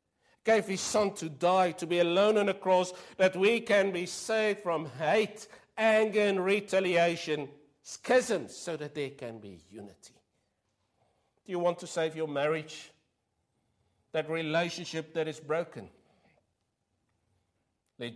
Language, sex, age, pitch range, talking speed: English, male, 60-79, 120-175 Hz, 135 wpm